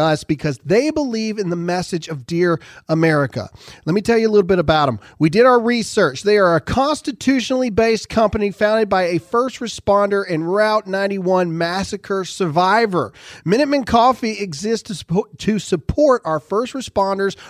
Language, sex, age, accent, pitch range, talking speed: English, male, 40-59, American, 170-225 Hz, 160 wpm